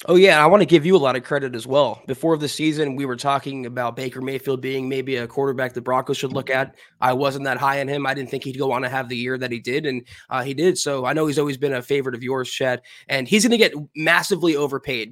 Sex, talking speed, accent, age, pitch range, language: male, 285 wpm, American, 20-39, 135-170 Hz, English